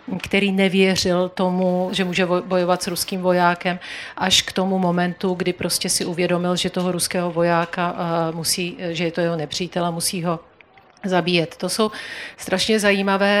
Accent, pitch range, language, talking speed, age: native, 175-190 Hz, Czech, 150 wpm, 40-59